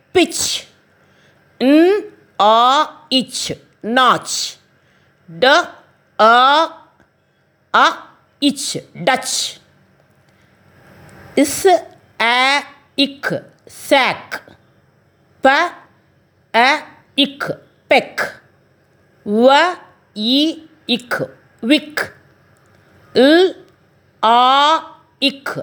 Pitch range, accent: 230-295 Hz, native